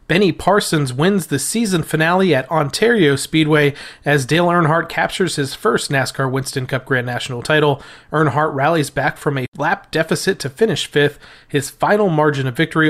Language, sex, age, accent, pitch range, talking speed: English, male, 30-49, American, 135-165 Hz, 165 wpm